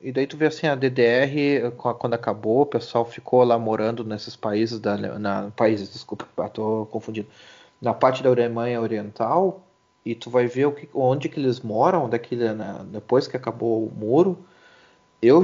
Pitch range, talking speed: 115-155 Hz, 175 wpm